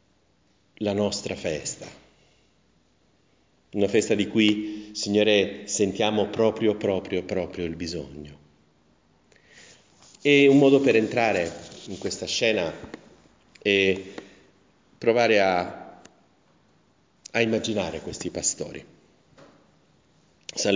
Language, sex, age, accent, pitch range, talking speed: Italian, male, 40-59, native, 85-105 Hz, 85 wpm